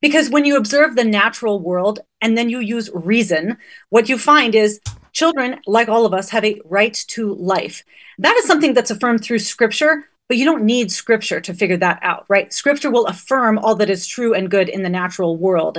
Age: 30-49